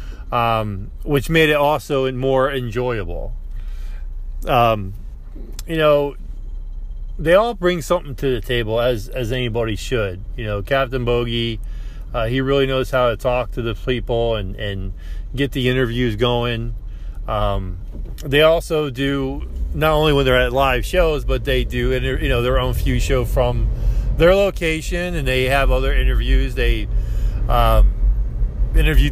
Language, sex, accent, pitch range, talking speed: English, male, American, 105-145 Hz, 150 wpm